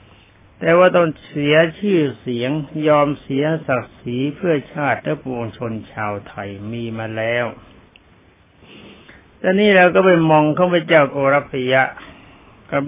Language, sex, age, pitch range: Thai, male, 60-79, 115-155 Hz